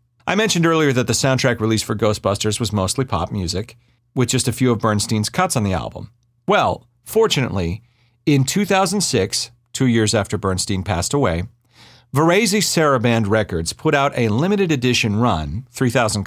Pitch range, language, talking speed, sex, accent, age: 110-155 Hz, English, 160 wpm, male, American, 40-59